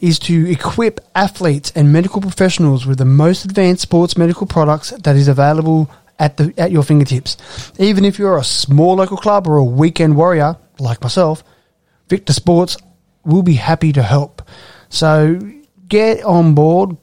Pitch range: 140-180 Hz